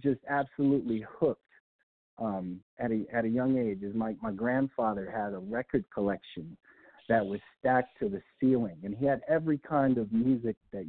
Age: 50-69